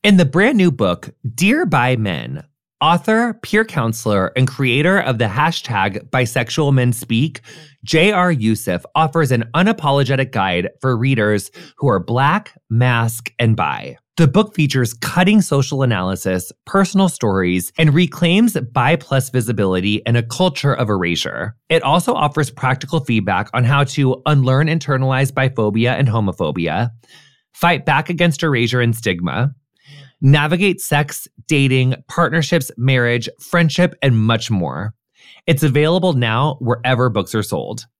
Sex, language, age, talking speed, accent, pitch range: male, English, 20-39, 135 wpm, American, 115-160 Hz